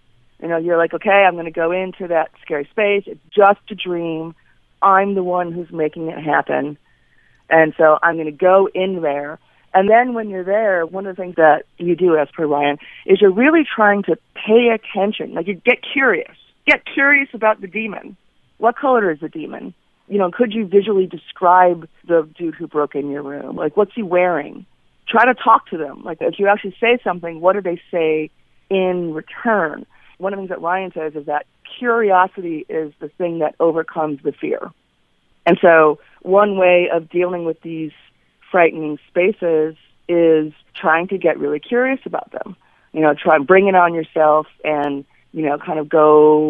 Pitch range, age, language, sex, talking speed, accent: 155-200 Hz, 40-59, English, female, 195 wpm, American